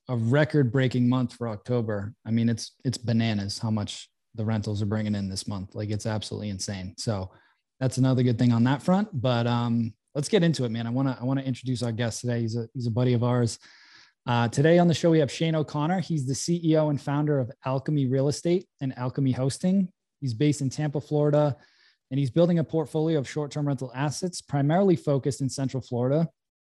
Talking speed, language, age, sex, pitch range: 210 wpm, English, 20-39, male, 125-150 Hz